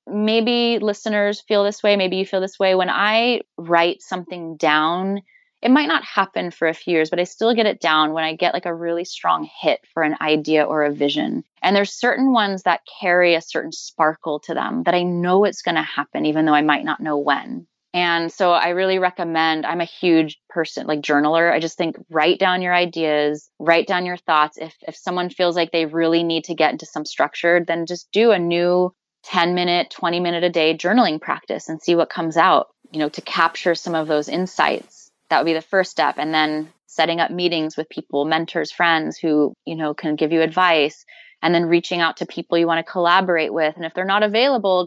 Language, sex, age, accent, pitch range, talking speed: English, female, 20-39, American, 160-180 Hz, 220 wpm